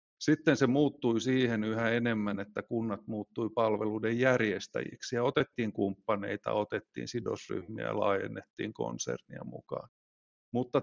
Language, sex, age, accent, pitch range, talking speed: Finnish, male, 50-69, native, 110-135 Hz, 115 wpm